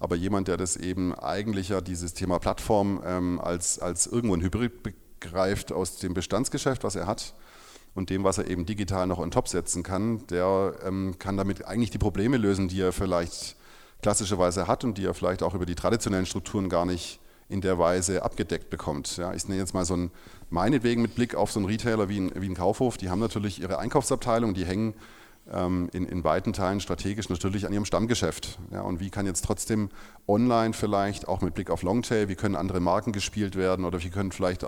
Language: German